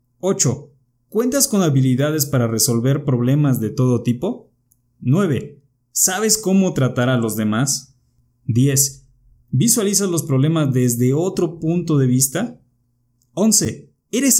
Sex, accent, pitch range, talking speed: male, Mexican, 125-160 Hz, 115 wpm